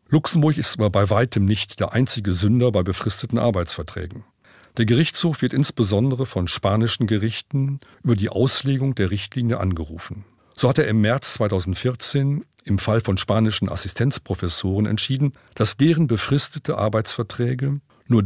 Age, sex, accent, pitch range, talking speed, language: 40-59, male, German, 100-135 Hz, 140 wpm, German